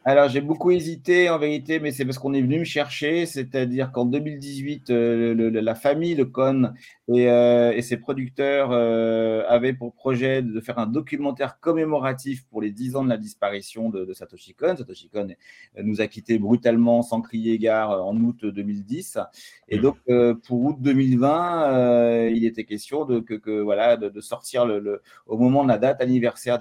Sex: male